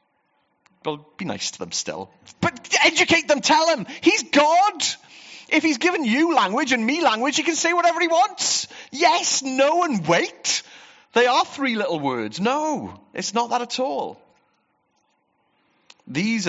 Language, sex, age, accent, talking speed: English, male, 40-59, British, 155 wpm